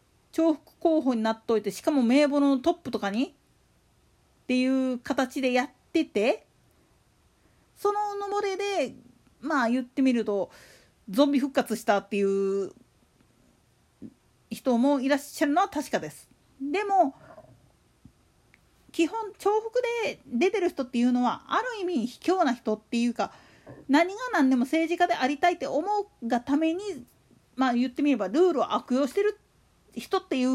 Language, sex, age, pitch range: Japanese, female, 40-59, 245-370 Hz